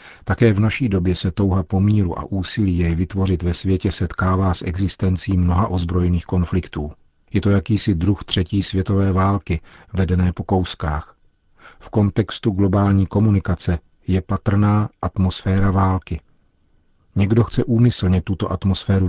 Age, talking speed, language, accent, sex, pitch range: 40-59, 130 wpm, Czech, native, male, 90-100 Hz